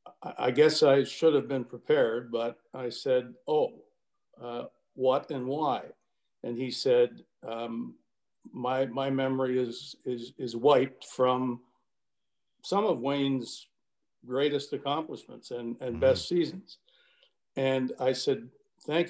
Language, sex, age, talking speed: English, male, 60-79, 125 wpm